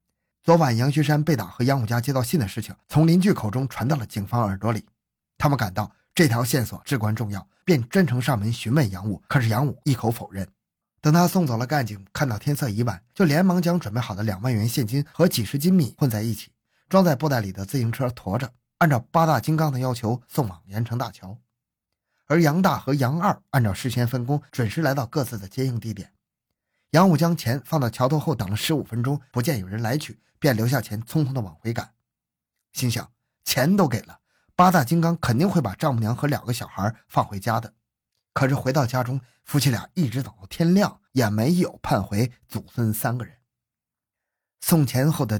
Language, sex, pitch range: Chinese, male, 110-150 Hz